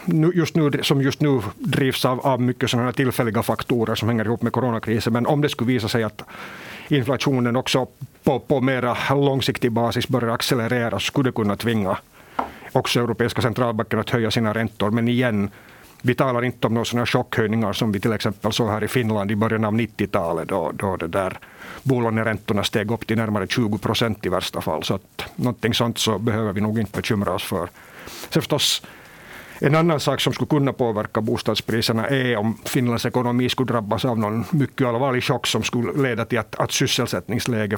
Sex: male